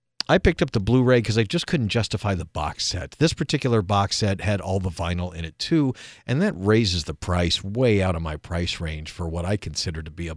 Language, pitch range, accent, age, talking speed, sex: English, 90-110 Hz, American, 50-69, 245 wpm, male